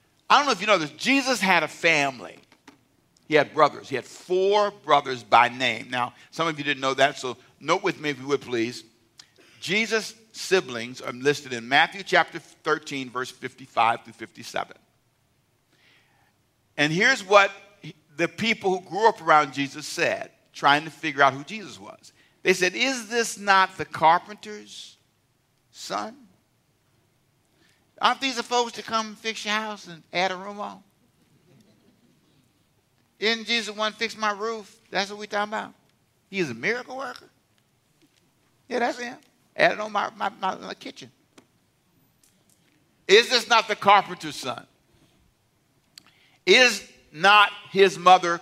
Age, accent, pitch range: 50-69, American, 135-210 Hz